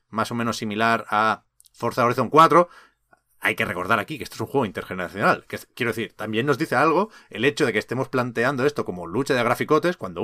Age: 30-49